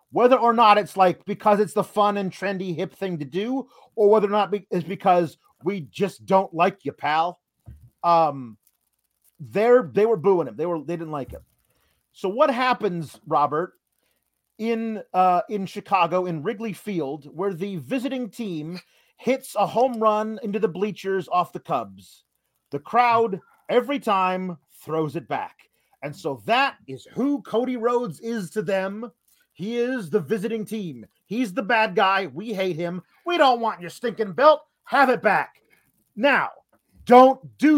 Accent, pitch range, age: American, 175-240 Hz, 30-49